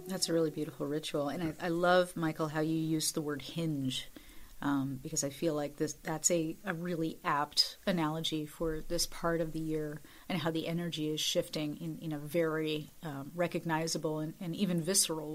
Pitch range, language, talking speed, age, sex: 155-185 Hz, English, 195 wpm, 30-49, female